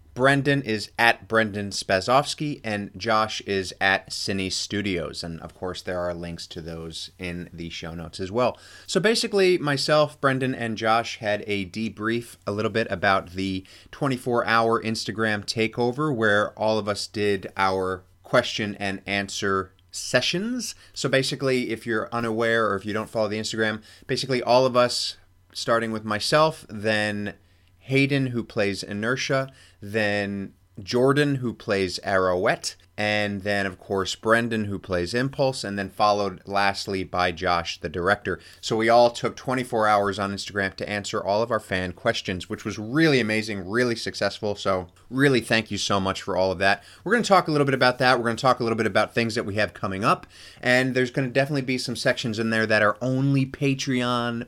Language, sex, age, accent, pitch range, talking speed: English, male, 30-49, American, 100-125 Hz, 180 wpm